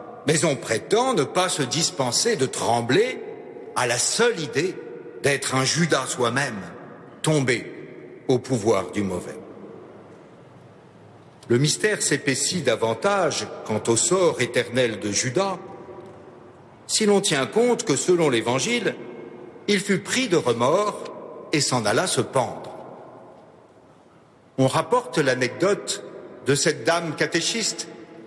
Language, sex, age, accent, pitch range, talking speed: French, male, 60-79, French, 130-195 Hz, 120 wpm